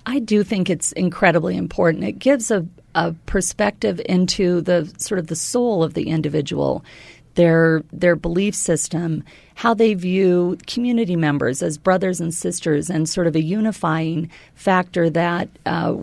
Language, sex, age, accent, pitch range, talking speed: English, female, 40-59, American, 165-200 Hz, 155 wpm